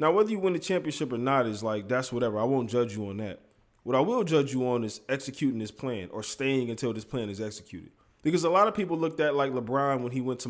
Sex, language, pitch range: male, English, 115-150 Hz